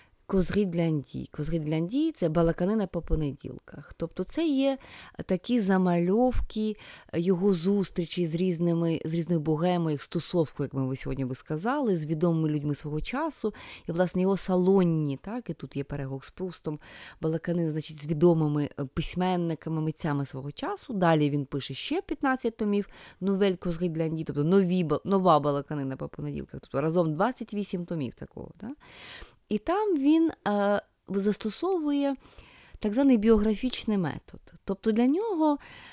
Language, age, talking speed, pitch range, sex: Ukrainian, 20-39, 135 wpm, 155-220 Hz, female